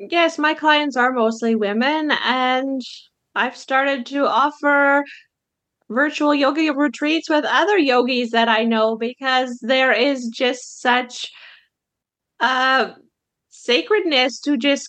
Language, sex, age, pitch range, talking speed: English, female, 20-39, 235-285 Hz, 115 wpm